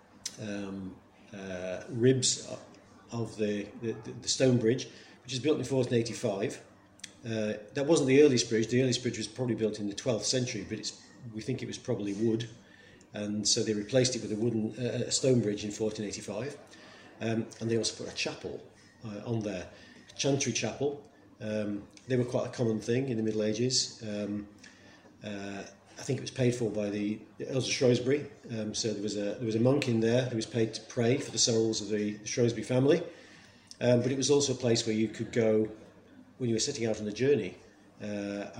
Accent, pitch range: British, 105-125 Hz